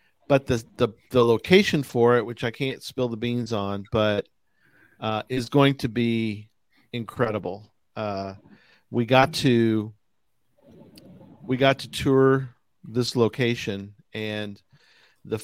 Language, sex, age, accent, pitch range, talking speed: English, male, 40-59, American, 105-130 Hz, 125 wpm